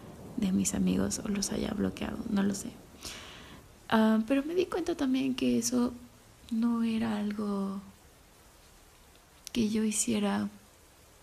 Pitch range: 205-240 Hz